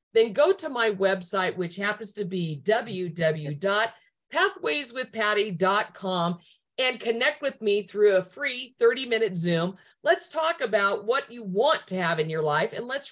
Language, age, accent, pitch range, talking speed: English, 50-69, American, 185-230 Hz, 145 wpm